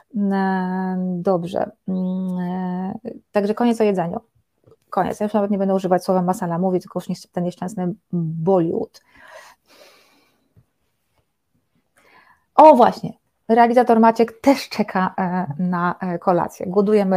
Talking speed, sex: 100 wpm, female